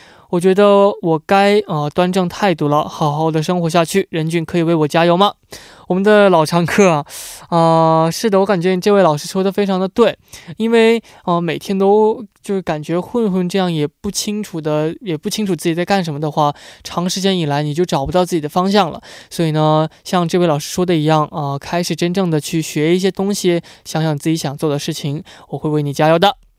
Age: 20-39